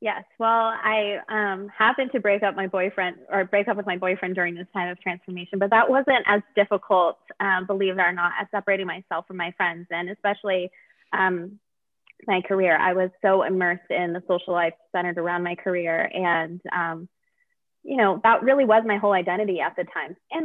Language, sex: English, female